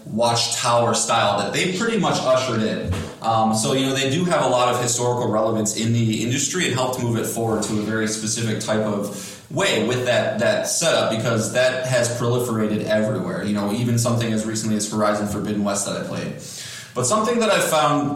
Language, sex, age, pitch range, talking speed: English, male, 20-39, 110-135 Hz, 205 wpm